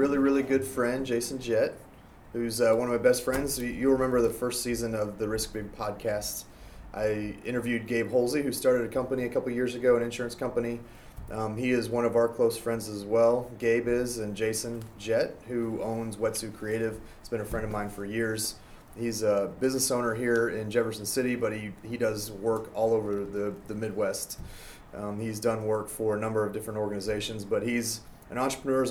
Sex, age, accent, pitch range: male, 30-49, American, 105-120 Hz